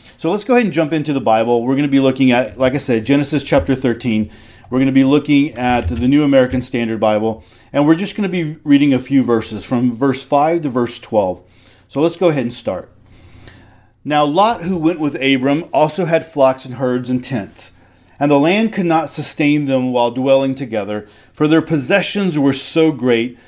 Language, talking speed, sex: English, 210 wpm, male